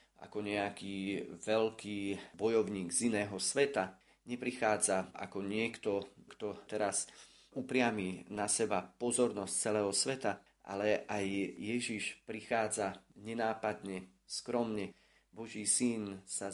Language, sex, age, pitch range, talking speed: Slovak, male, 30-49, 100-120 Hz, 100 wpm